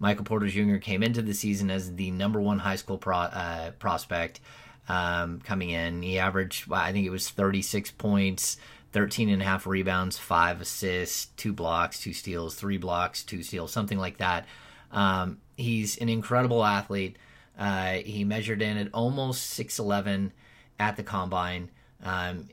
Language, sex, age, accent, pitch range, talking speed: English, male, 30-49, American, 95-115 Hz, 160 wpm